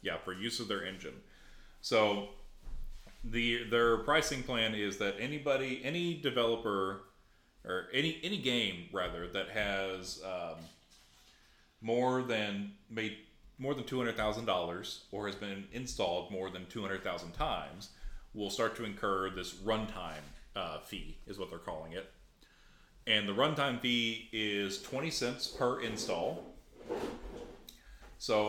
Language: English